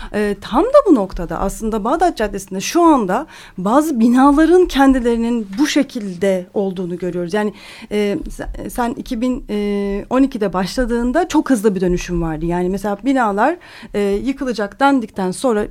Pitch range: 205-290 Hz